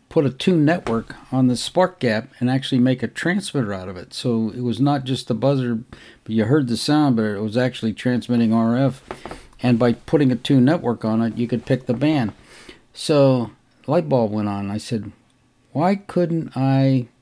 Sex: male